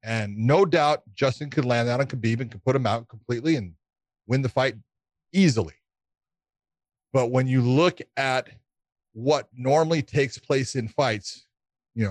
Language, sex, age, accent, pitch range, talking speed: English, male, 40-59, American, 115-145 Hz, 160 wpm